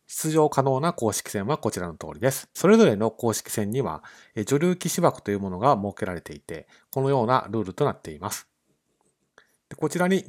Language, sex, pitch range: Japanese, male, 105-150 Hz